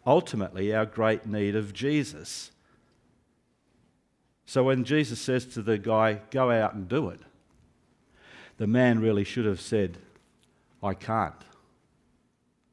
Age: 60-79